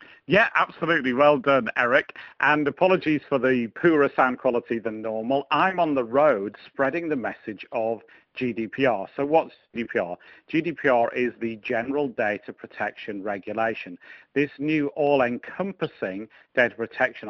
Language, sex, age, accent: English, male, 50-69, British